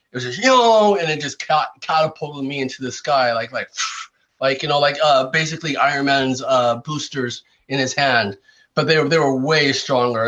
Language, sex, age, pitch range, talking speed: English, male, 30-49, 135-175 Hz, 210 wpm